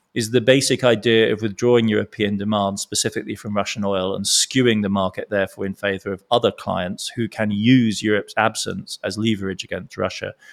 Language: English